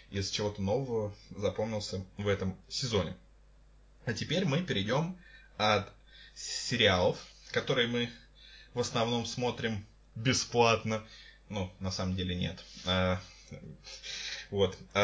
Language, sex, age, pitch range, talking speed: Russian, male, 20-39, 100-130 Hz, 100 wpm